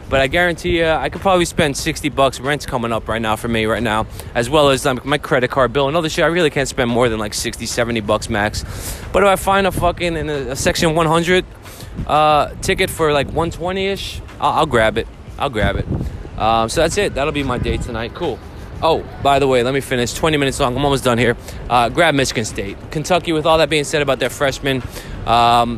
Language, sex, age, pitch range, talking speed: English, male, 20-39, 115-150 Hz, 230 wpm